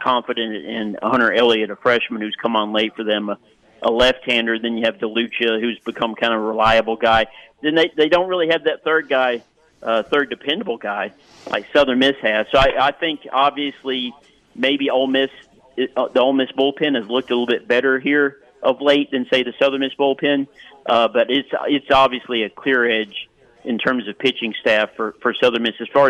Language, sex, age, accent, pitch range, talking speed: English, male, 50-69, American, 115-135 Hz, 210 wpm